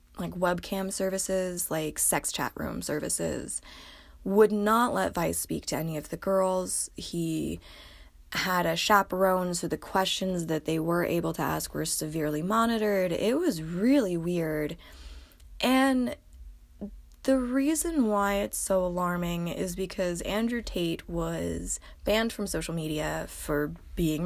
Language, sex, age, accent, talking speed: English, female, 20-39, American, 140 wpm